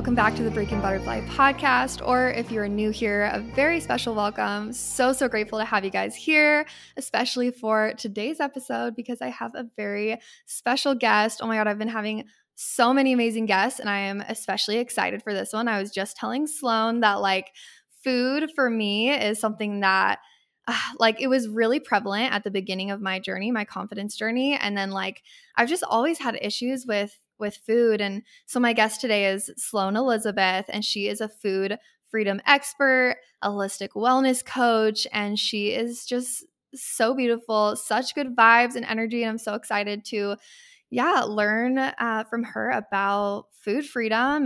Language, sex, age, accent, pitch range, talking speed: English, female, 10-29, American, 210-250 Hz, 180 wpm